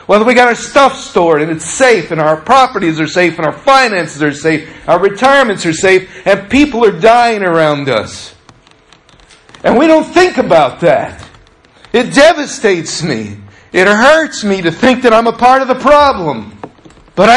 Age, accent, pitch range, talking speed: 50-69, American, 160-225 Hz, 175 wpm